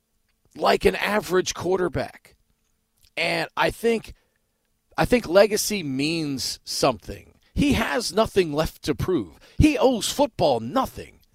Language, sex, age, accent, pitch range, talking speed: English, male, 40-59, American, 145-210 Hz, 115 wpm